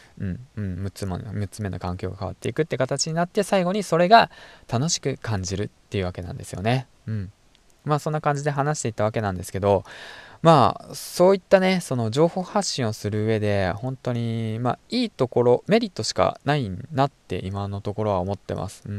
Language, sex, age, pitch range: Japanese, male, 20-39, 100-150 Hz